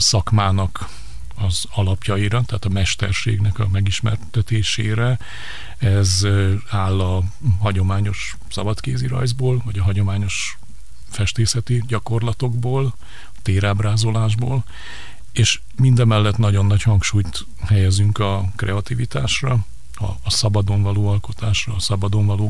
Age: 50-69